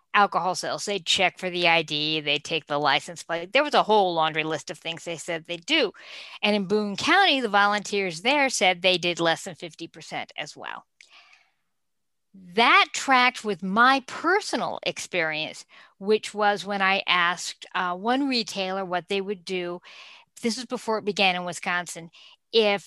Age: 50-69